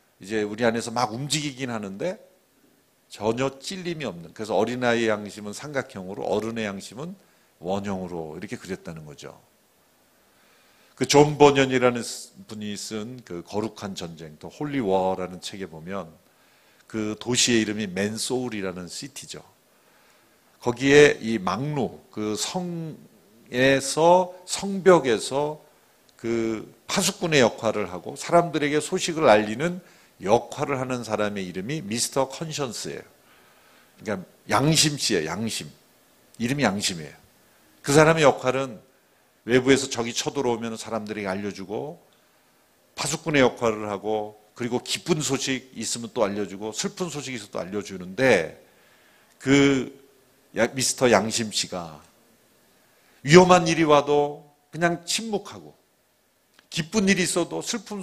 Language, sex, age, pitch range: Korean, male, 50-69, 105-150 Hz